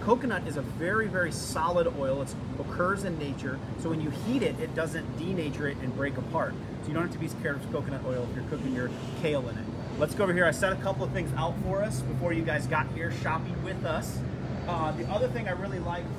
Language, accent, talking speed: English, American, 250 wpm